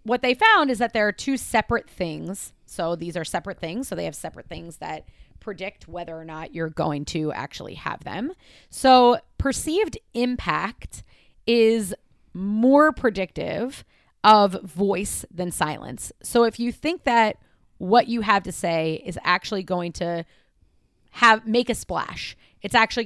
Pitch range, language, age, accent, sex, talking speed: 180-240 Hz, English, 30-49, American, female, 160 wpm